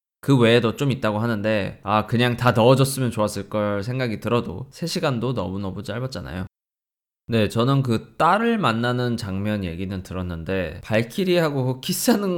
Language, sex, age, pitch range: Korean, male, 20-39, 100-145 Hz